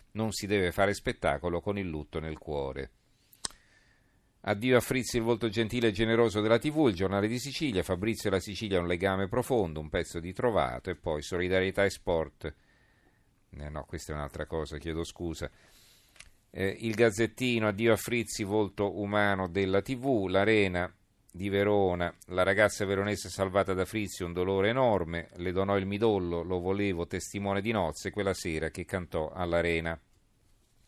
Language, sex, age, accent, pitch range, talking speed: Italian, male, 40-59, native, 85-105 Hz, 165 wpm